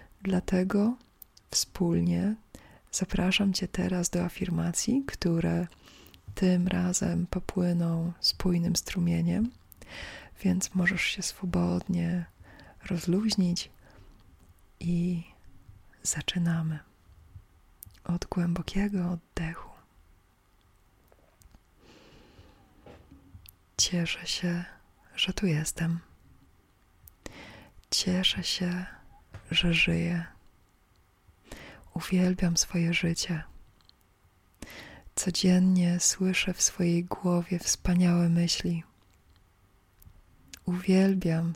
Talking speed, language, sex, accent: 60 wpm, Polish, female, native